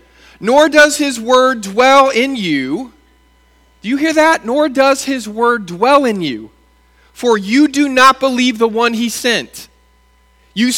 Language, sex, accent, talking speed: English, male, American, 155 wpm